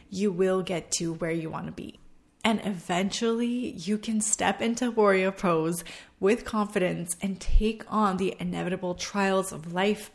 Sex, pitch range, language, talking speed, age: female, 175-205 Hz, English, 160 wpm, 20-39